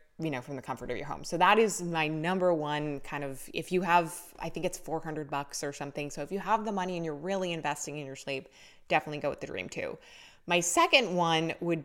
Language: English